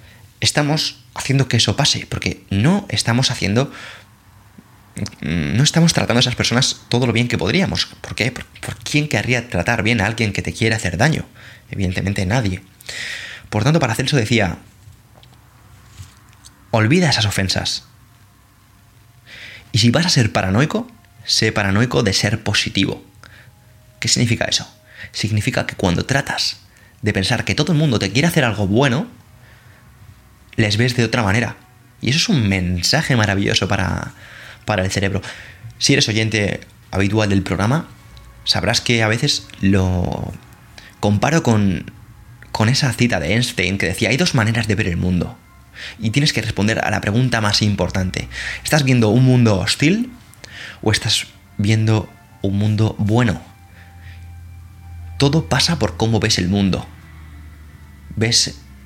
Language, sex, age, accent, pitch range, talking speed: Spanish, male, 20-39, Spanish, 100-120 Hz, 145 wpm